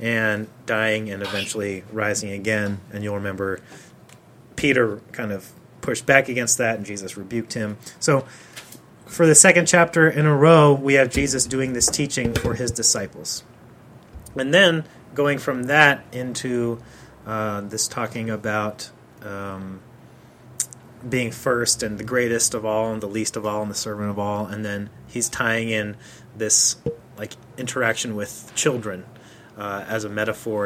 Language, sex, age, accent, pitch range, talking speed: English, male, 30-49, American, 105-130 Hz, 155 wpm